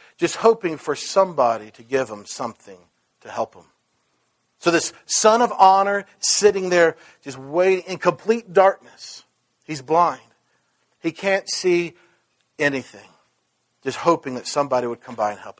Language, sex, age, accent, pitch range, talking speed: English, male, 50-69, American, 150-205 Hz, 145 wpm